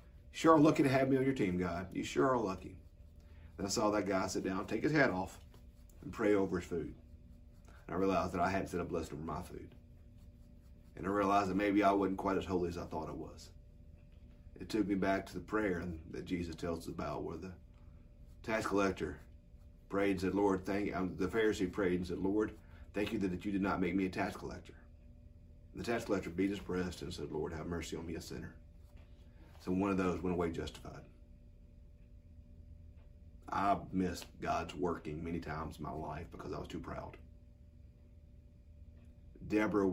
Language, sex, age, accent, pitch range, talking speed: English, male, 40-59, American, 80-95 Hz, 200 wpm